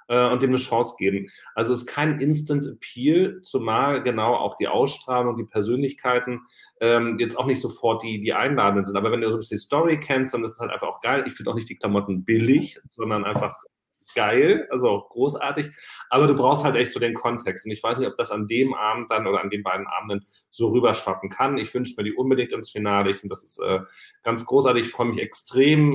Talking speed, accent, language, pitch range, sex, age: 225 wpm, German, German, 105-130 Hz, male, 30-49